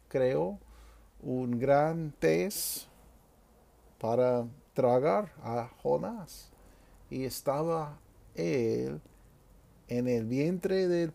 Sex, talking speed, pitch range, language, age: male, 80 wpm, 115-155 Hz, Spanish, 50-69